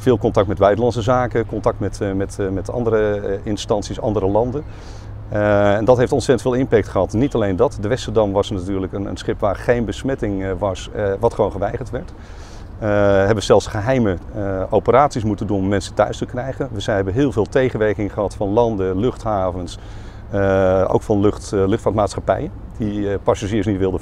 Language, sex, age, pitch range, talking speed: Dutch, male, 40-59, 100-110 Hz, 175 wpm